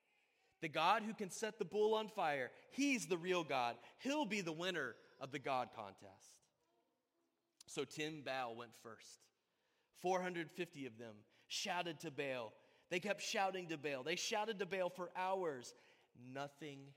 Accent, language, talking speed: American, English, 155 wpm